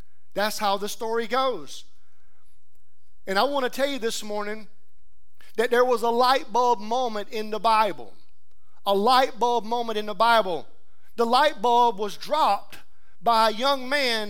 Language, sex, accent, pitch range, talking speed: English, male, American, 210-265 Hz, 165 wpm